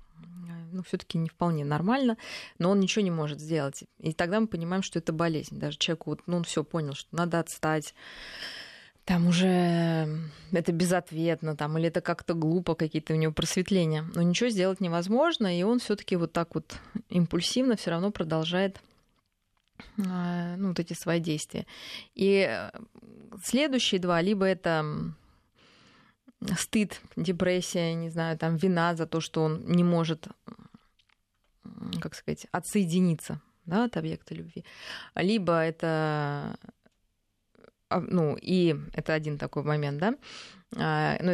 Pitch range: 160-190 Hz